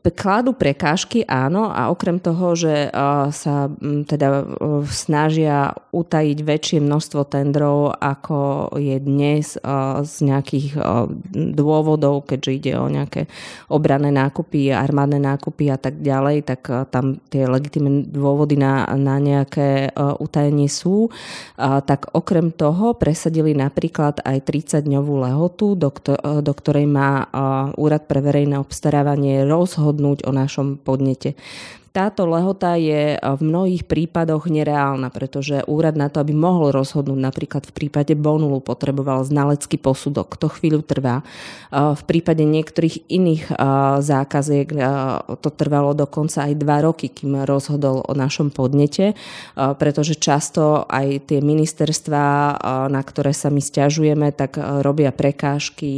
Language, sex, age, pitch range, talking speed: Slovak, female, 30-49, 140-155 Hz, 120 wpm